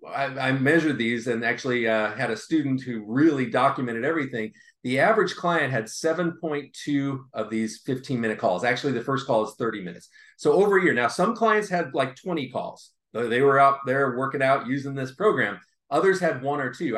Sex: male